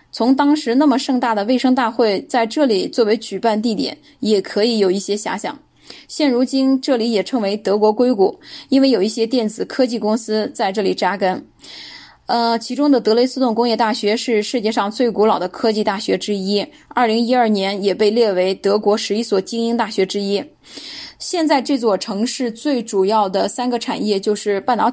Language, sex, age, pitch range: Chinese, female, 10-29, 210-255 Hz